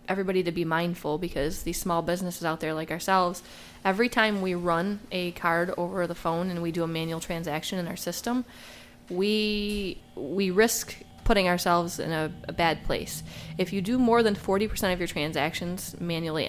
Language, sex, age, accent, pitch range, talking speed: English, female, 20-39, American, 160-185 Hz, 180 wpm